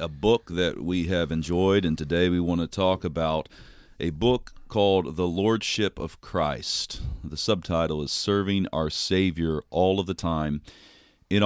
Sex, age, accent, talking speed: male, 40-59, American, 160 wpm